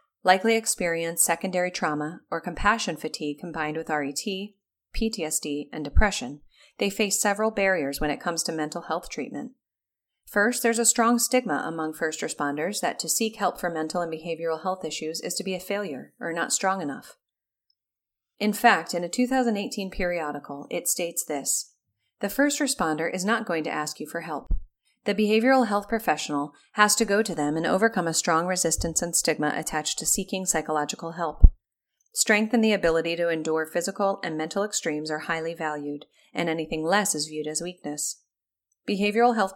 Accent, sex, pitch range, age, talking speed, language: American, female, 155-205 Hz, 30-49, 175 wpm, English